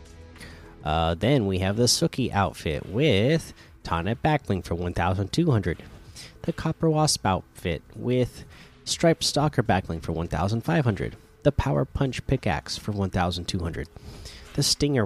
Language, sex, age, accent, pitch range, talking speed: English, male, 30-49, American, 90-120 Hz, 120 wpm